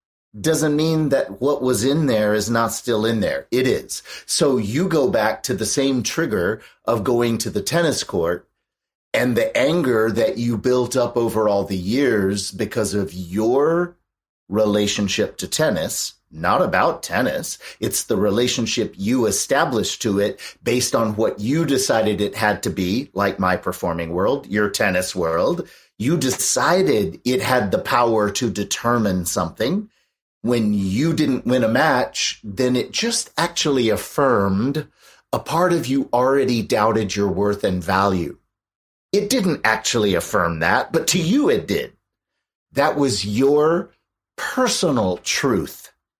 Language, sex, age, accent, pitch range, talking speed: English, male, 40-59, American, 105-135 Hz, 150 wpm